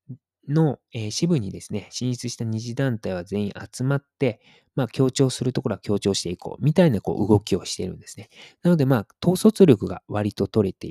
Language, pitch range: Japanese, 100-140 Hz